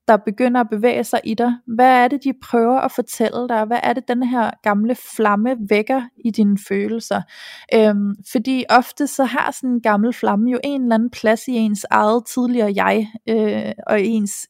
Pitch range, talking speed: 205-245 Hz, 200 wpm